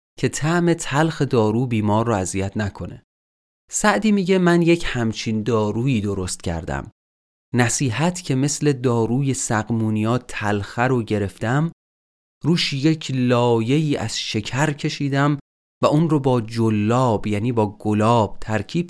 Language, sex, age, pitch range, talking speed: Persian, male, 30-49, 105-145 Hz, 120 wpm